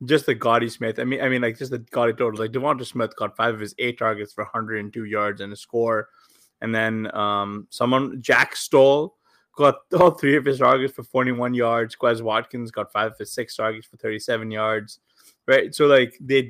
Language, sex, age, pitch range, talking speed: English, male, 20-39, 110-130 Hz, 220 wpm